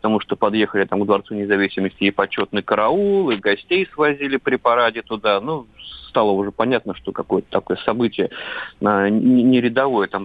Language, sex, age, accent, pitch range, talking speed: Russian, male, 30-49, native, 100-120 Hz, 160 wpm